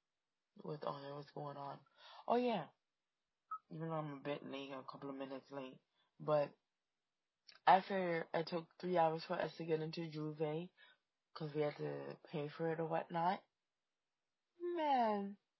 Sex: female